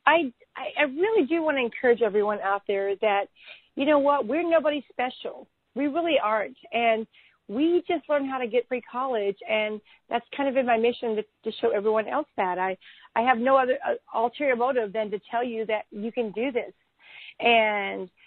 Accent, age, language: American, 40-59, English